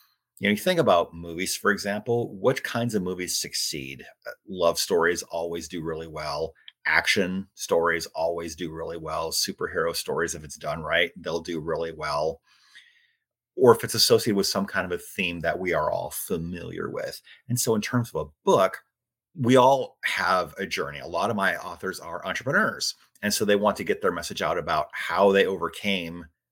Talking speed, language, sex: 190 wpm, English, male